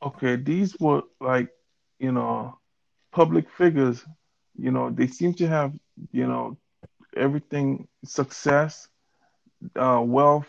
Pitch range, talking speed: 125-160 Hz, 115 wpm